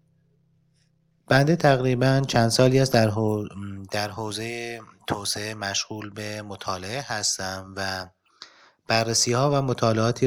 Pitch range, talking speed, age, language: 105-125 Hz, 105 wpm, 30-49, Arabic